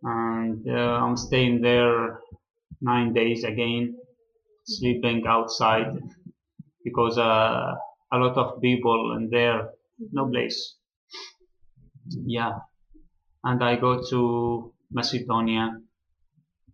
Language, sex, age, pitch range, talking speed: English, male, 20-39, 115-130 Hz, 95 wpm